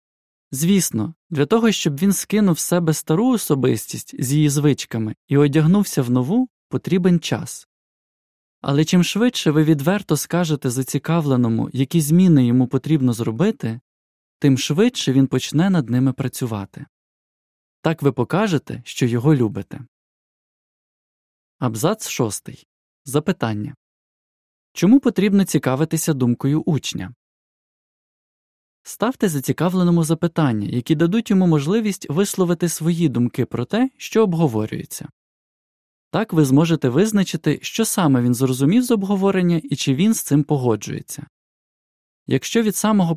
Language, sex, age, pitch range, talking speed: Ukrainian, male, 20-39, 135-180 Hz, 115 wpm